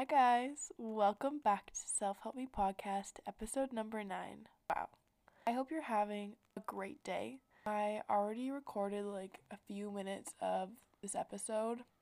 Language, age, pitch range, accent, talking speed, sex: English, 20-39, 195-240 Hz, American, 145 wpm, female